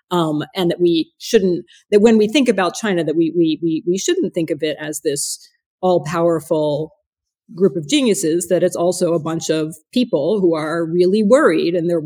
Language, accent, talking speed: English, American, 195 wpm